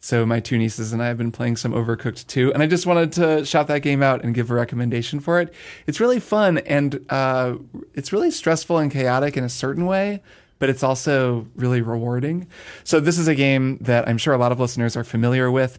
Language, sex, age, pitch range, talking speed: English, male, 20-39, 120-150 Hz, 230 wpm